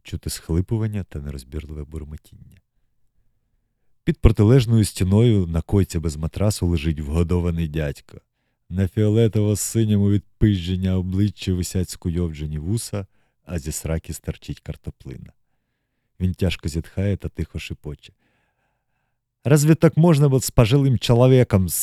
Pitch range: 85-125 Hz